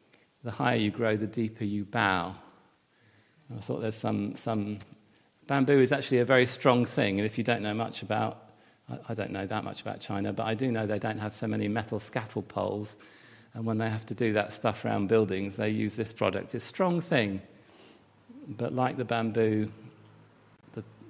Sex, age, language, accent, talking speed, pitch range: male, 40-59, English, British, 195 wpm, 110-125 Hz